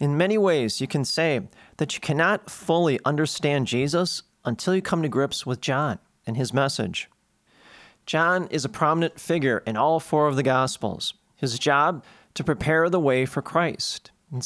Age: 40-59